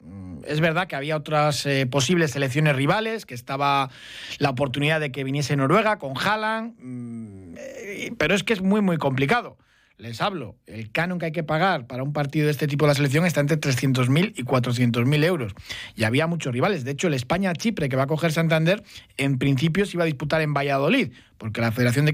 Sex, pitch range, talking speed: male, 135-165 Hz, 200 wpm